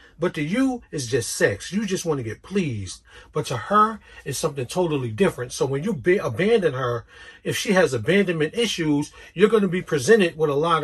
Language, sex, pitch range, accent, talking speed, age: English, male, 130-180 Hz, American, 205 wpm, 40-59